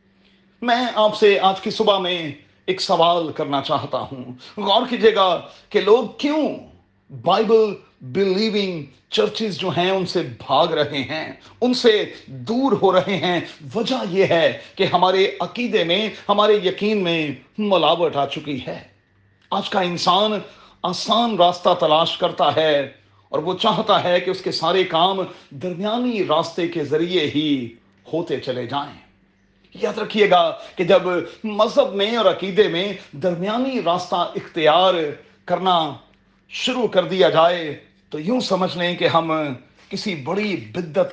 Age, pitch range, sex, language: 40-59, 145-210 Hz, male, Urdu